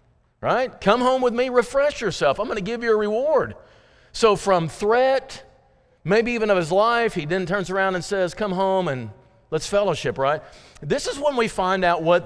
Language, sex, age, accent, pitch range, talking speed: English, male, 50-69, American, 145-210 Hz, 200 wpm